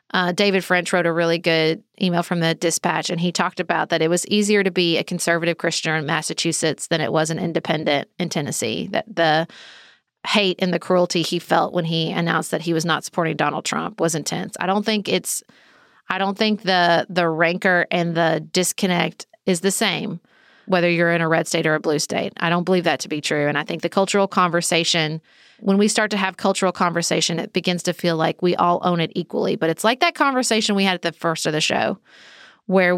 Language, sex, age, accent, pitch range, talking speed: English, female, 30-49, American, 170-195 Hz, 225 wpm